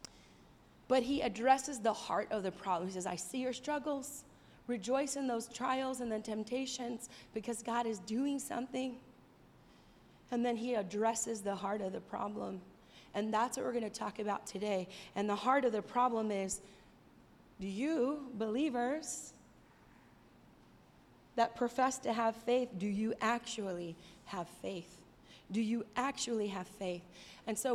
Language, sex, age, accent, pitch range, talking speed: English, female, 30-49, American, 215-255 Hz, 155 wpm